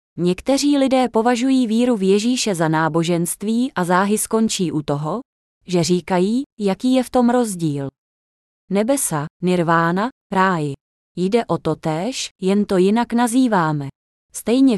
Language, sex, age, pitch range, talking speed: Czech, female, 20-39, 170-240 Hz, 130 wpm